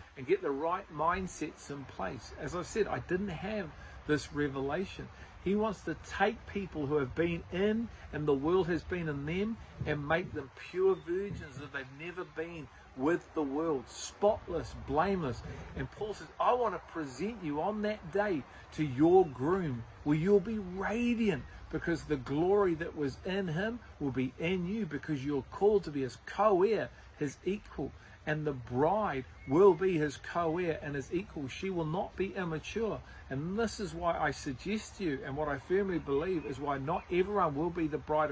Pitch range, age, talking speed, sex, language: 145-190 Hz, 50-69, 185 wpm, male, English